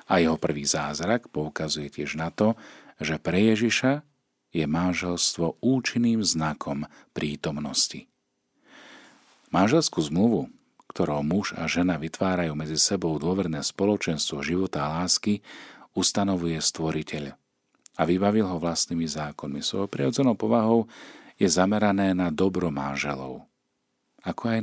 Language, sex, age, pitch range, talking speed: Slovak, male, 40-59, 75-95 Hz, 110 wpm